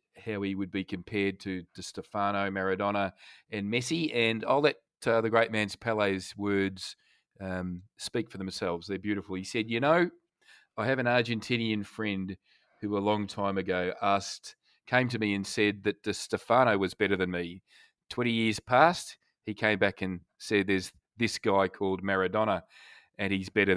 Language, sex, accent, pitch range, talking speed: English, male, Australian, 95-115 Hz, 175 wpm